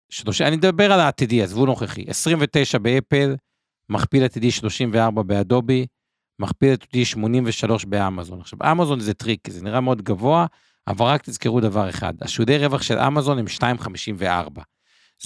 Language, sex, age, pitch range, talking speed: Hebrew, male, 50-69, 105-140 Hz, 145 wpm